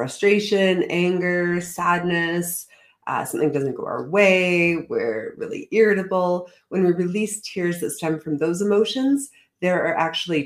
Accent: American